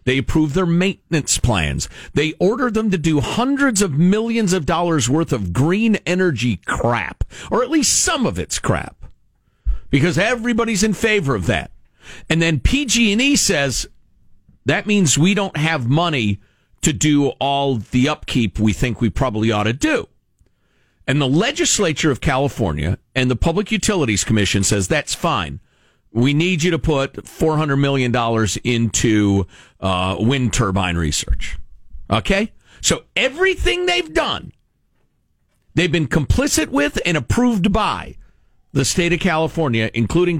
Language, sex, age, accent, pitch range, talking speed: English, male, 50-69, American, 115-190 Hz, 145 wpm